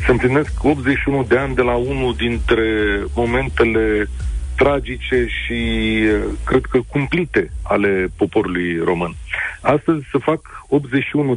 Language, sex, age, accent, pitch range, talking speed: Romanian, male, 50-69, native, 105-130 Hz, 110 wpm